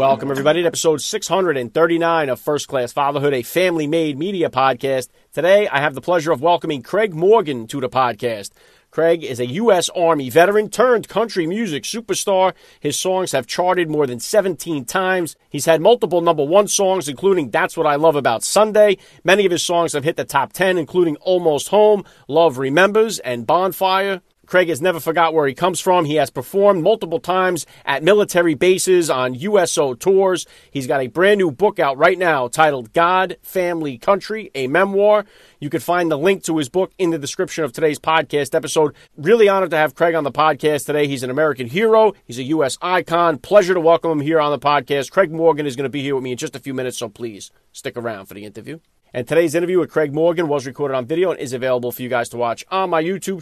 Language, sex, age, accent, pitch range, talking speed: English, male, 40-59, American, 140-185 Hz, 210 wpm